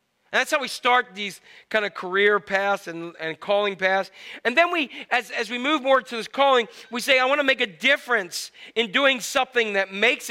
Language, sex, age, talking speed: English, male, 40-59, 220 wpm